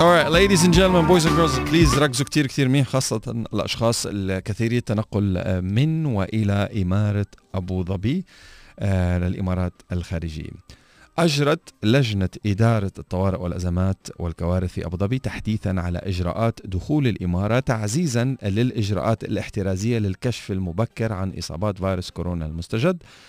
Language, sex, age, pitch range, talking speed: Arabic, male, 40-59, 95-130 Hz, 115 wpm